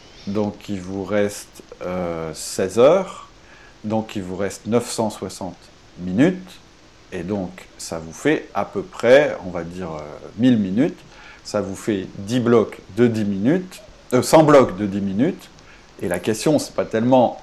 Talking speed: 145 wpm